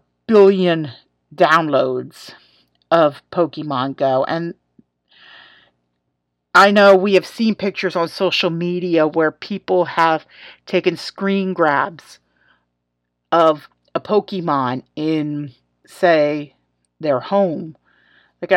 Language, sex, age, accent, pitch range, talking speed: English, female, 40-59, American, 145-195 Hz, 95 wpm